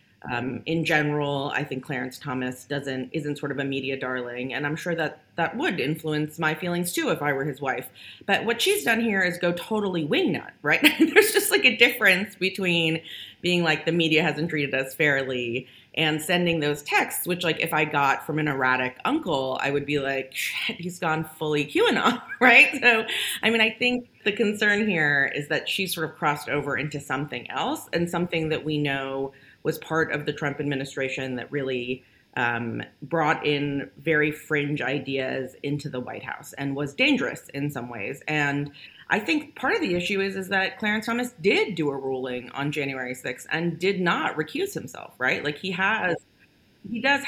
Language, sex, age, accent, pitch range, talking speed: English, female, 30-49, American, 140-185 Hz, 195 wpm